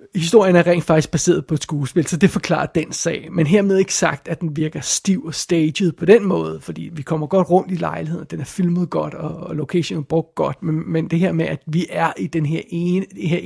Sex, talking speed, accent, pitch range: male, 255 wpm, native, 155-180 Hz